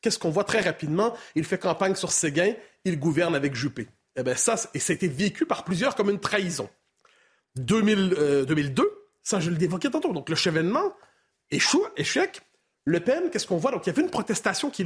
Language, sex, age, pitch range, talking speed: French, male, 40-59, 175-260 Hz, 205 wpm